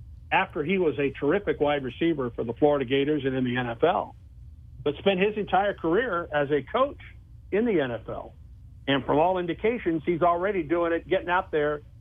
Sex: male